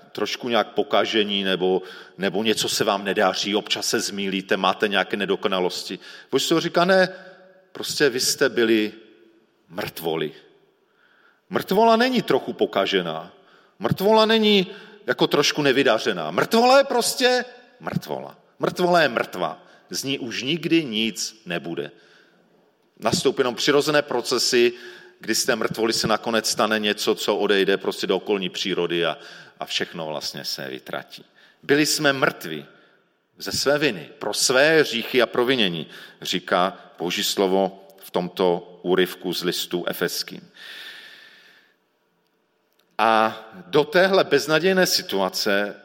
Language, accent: Czech, native